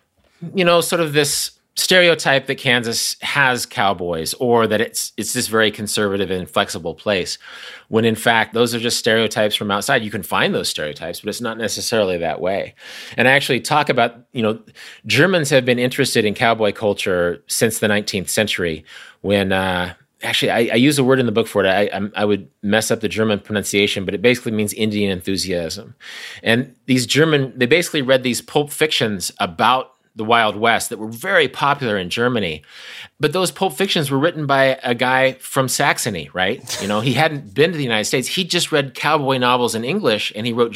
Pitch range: 110-140 Hz